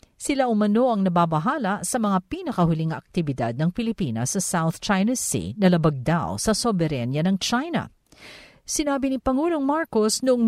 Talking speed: 145 wpm